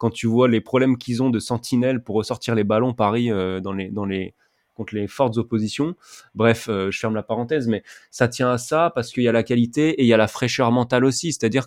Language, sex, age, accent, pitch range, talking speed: French, male, 20-39, French, 105-130 Hz, 240 wpm